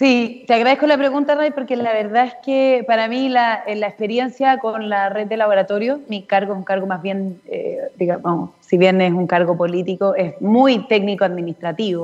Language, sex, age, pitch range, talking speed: Spanish, female, 30-49, 190-230 Hz, 200 wpm